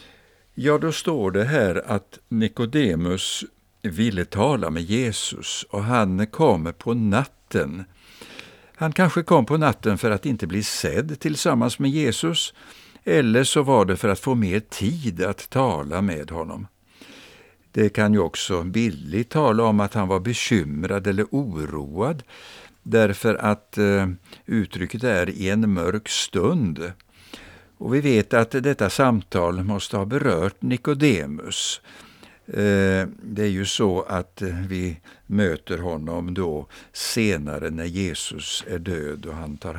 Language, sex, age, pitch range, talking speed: Swedish, male, 60-79, 90-125 Hz, 135 wpm